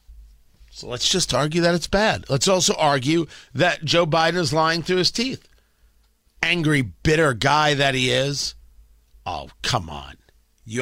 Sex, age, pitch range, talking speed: male, 40-59, 110-180 Hz, 155 wpm